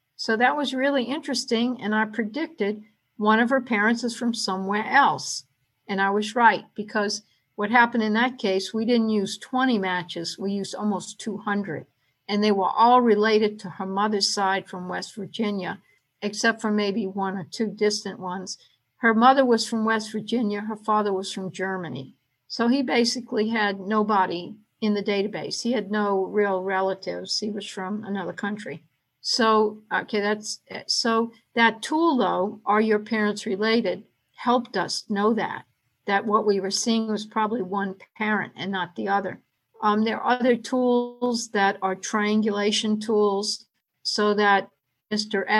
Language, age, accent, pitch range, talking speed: English, 60-79, American, 195-225 Hz, 165 wpm